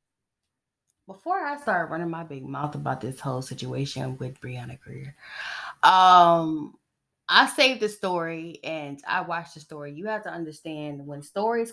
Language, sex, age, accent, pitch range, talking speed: English, female, 20-39, American, 150-200 Hz, 155 wpm